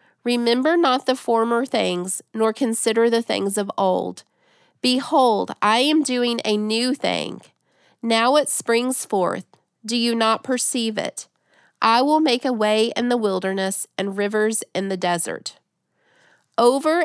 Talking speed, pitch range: 145 wpm, 200-245 Hz